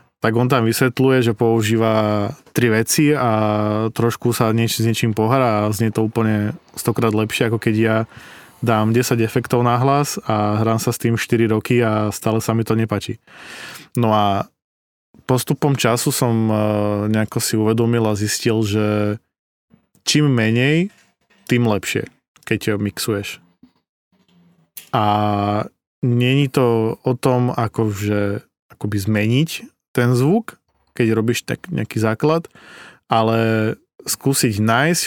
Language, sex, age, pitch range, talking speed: Slovak, male, 20-39, 105-125 Hz, 135 wpm